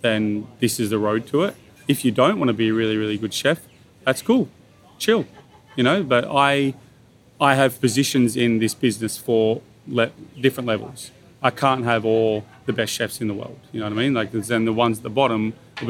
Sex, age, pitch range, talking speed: male, 30-49, 110-130 Hz, 225 wpm